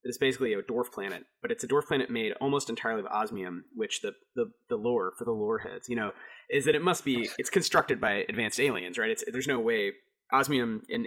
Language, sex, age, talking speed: English, male, 30-49, 235 wpm